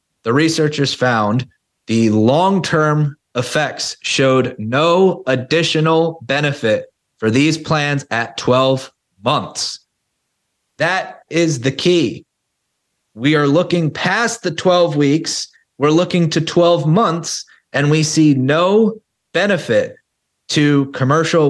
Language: English